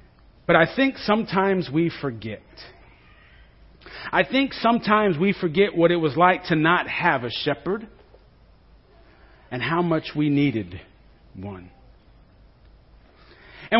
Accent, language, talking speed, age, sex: American, English, 115 wpm, 40-59, male